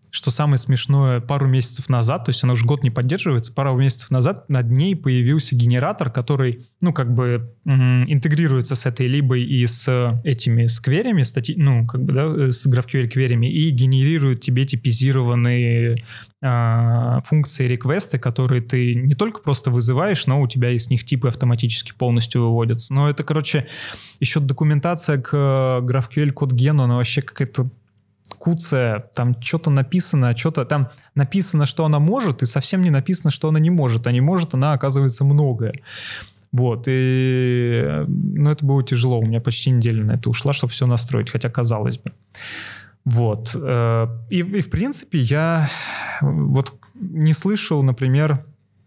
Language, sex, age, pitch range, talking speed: Russian, male, 20-39, 125-145 Hz, 145 wpm